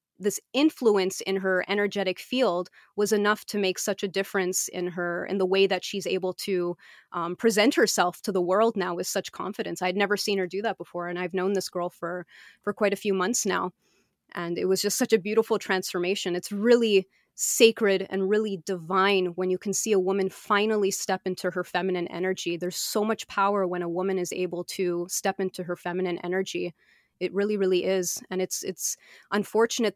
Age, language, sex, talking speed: 30-49, English, female, 200 wpm